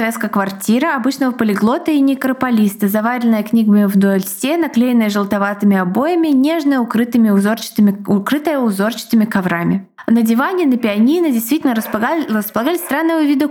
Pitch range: 215-265 Hz